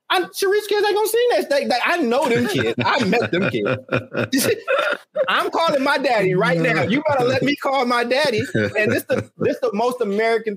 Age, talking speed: 30-49, 200 wpm